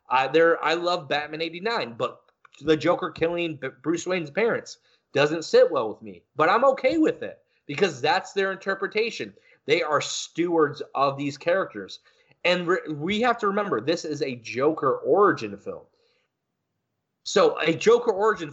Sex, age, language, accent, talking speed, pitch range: male, 30-49, English, American, 150 wpm, 160-235 Hz